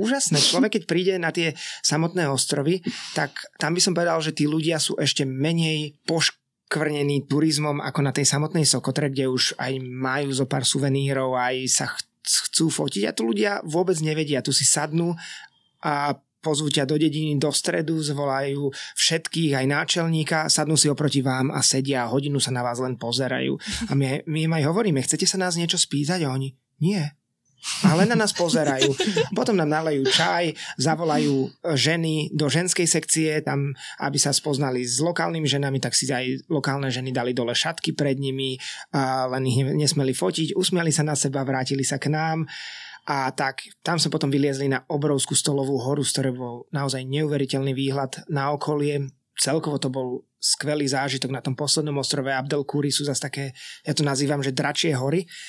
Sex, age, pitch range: male, 20-39, 135-160 Hz